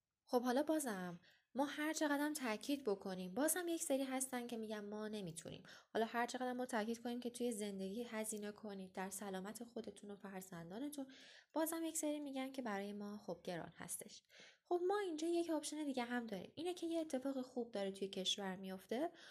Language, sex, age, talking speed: Persian, female, 10-29, 185 wpm